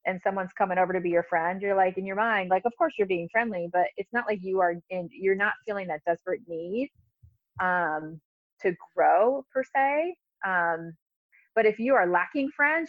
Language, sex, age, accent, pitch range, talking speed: English, female, 30-49, American, 170-205 Hz, 205 wpm